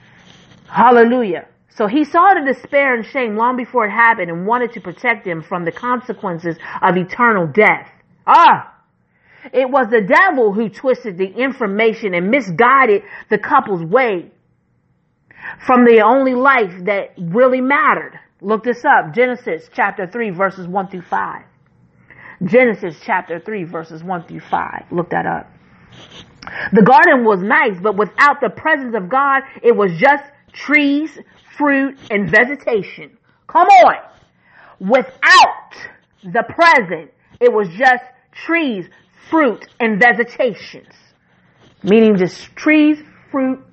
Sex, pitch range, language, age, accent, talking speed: female, 200-275 Hz, English, 40-59, American, 135 wpm